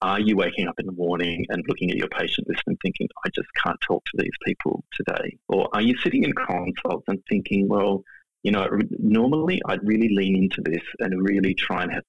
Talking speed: 220 wpm